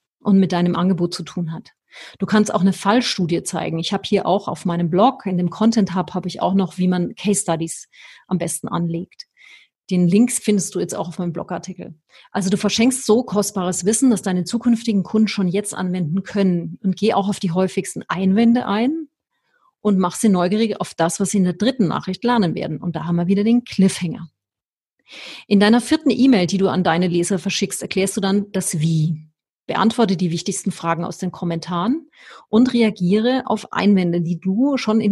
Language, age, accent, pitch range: German, 40-59, German, 180-220 Hz